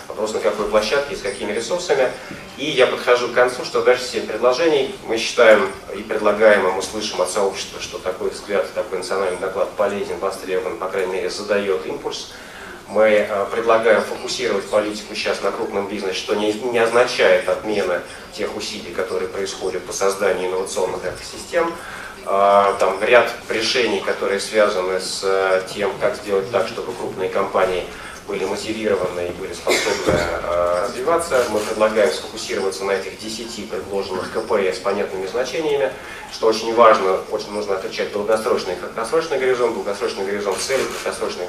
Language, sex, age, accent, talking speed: Russian, male, 30-49, native, 150 wpm